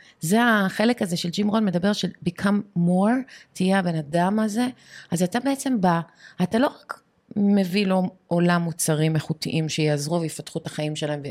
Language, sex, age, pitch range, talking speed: Hebrew, female, 30-49, 160-205 Hz, 165 wpm